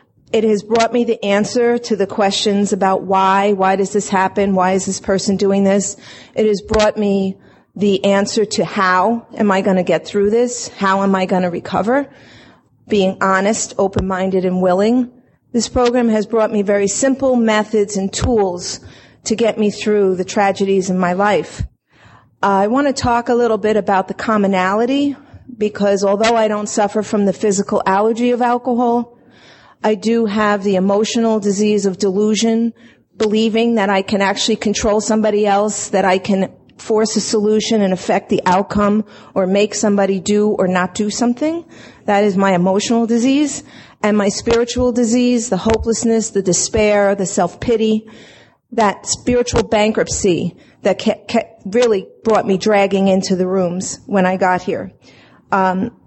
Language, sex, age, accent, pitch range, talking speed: English, female, 40-59, American, 195-225 Hz, 165 wpm